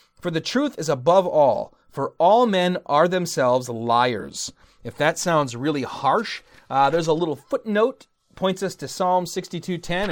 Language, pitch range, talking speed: English, 135-185 Hz, 165 wpm